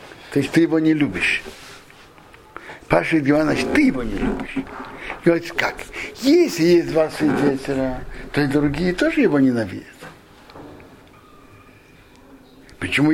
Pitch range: 140-200 Hz